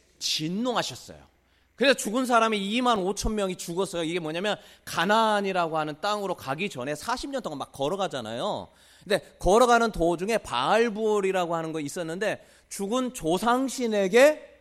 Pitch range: 145-225 Hz